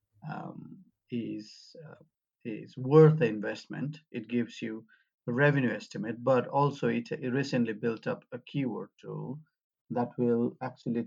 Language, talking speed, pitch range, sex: English, 140 wpm, 115-145 Hz, male